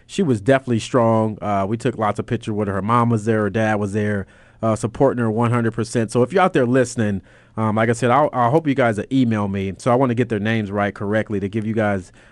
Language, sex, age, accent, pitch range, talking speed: English, male, 30-49, American, 105-120 Hz, 270 wpm